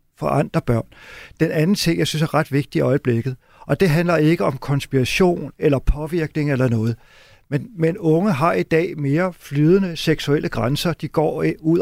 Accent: native